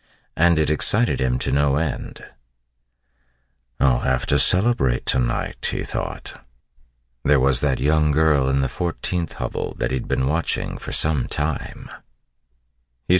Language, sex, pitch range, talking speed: English, male, 65-85 Hz, 140 wpm